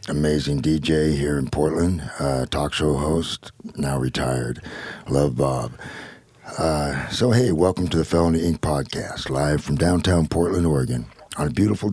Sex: male